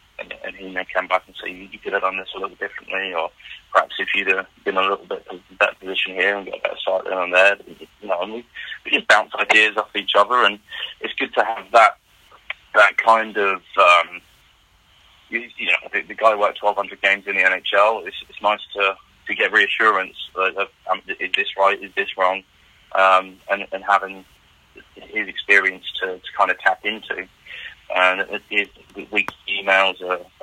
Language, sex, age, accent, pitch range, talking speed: English, male, 20-39, British, 90-95 Hz, 205 wpm